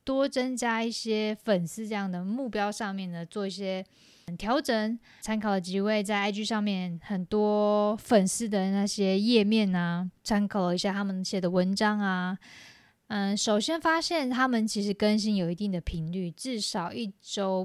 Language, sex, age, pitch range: Chinese, female, 20-39, 185-225 Hz